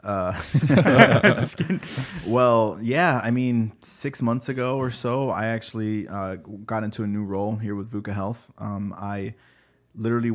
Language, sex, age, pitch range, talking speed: English, male, 20-39, 100-115 Hz, 145 wpm